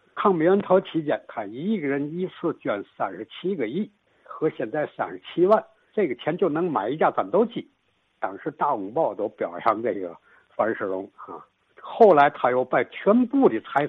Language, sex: Chinese, male